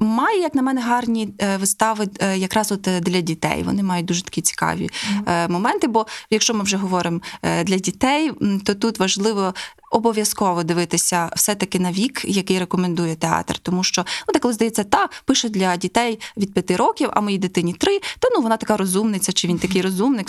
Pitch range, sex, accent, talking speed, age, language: 180-235 Hz, female, native, 175 wpm, 20-39, Ukrainian